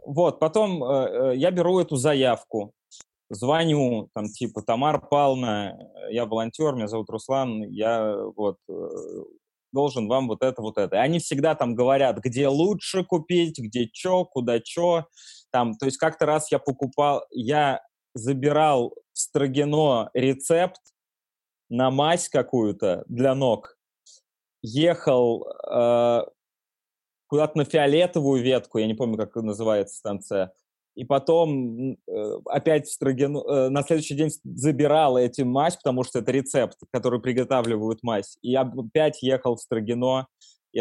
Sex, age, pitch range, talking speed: male, 20-39, 120-155 Hz, 130 wpm